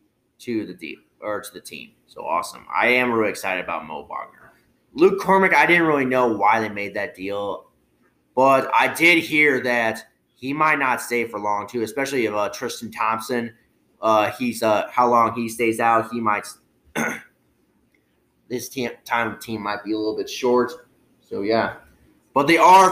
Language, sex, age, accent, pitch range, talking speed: English, male, 30-49, American, 105-130 Hz, 185 wpm